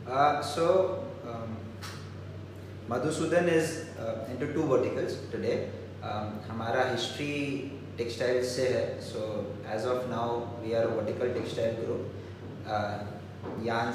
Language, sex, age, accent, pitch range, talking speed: Hindi, male, 20-39, native, 110-130 Hz, 100 wpm